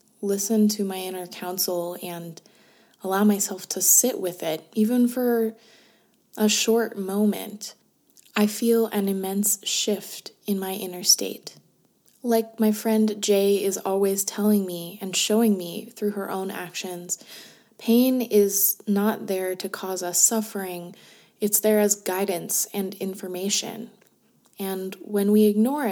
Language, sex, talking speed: English, female, 135 wpm